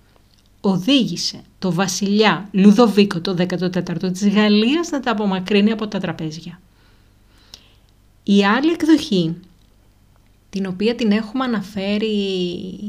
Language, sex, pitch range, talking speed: Greek, female, 170-215 Hz, 100 wpm